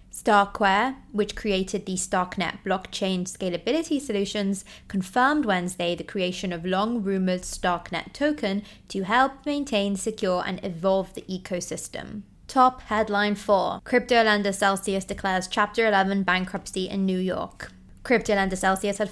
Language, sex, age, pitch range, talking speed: English, female, 20-39, 190-215 Hz, 125 wpm